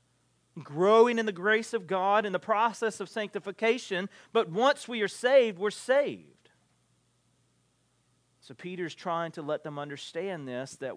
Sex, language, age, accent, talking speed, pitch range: male, English, 40-59, American, 150 wpm, 110-155 Hz